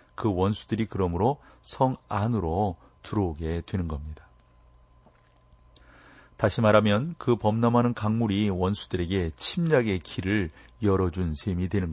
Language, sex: Korean, male